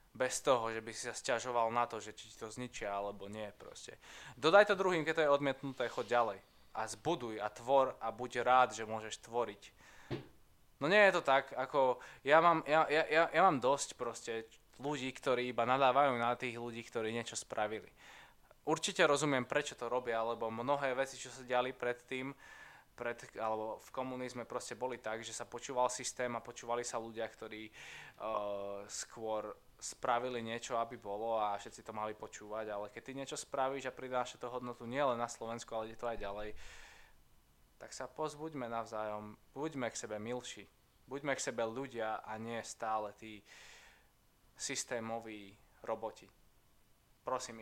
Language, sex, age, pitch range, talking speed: Slovak, male, 20-39, 110-130 Hz, 170 wpm